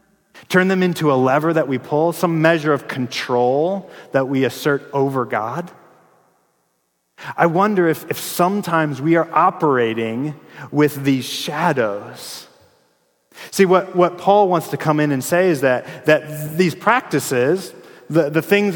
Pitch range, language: 135-180 Hz, English